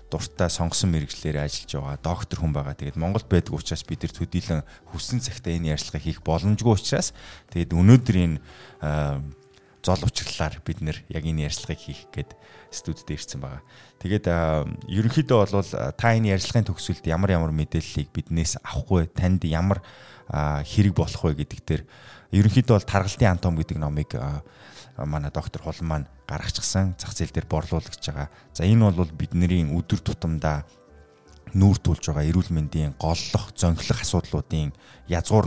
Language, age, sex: English, 20-39, male